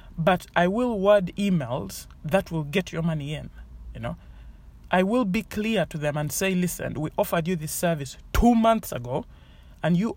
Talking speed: 190 wpm